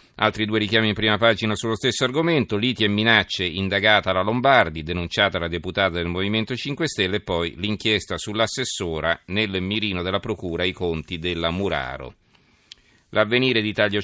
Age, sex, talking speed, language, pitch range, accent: 40-59, male, 160 wpm, Italian, 90-110 Hz, native